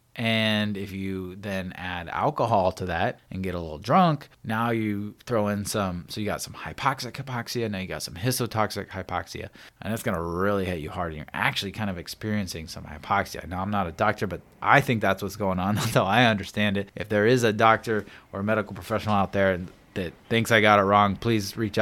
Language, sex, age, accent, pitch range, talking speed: English, male, 20-39, American, 95-115 Hz, 215 wpm